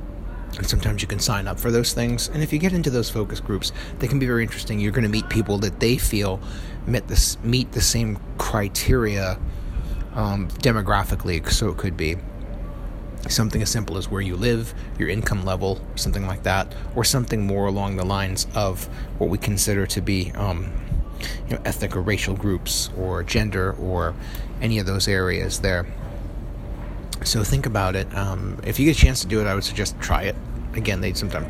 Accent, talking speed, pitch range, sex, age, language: American, 190 wpm, 95-115 Hz, male, 30-49, English